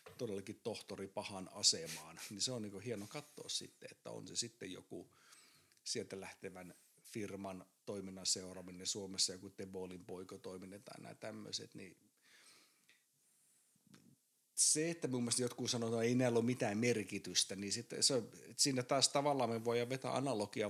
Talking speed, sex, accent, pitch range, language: 140 wpm, male, native, 100-125 Hz, Finnish